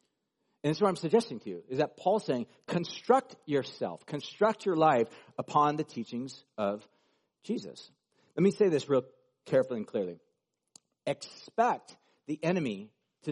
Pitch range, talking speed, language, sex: 150-215 Hz, 150 wpm, English, male